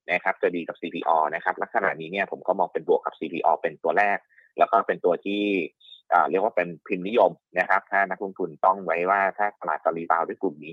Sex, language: male, Thai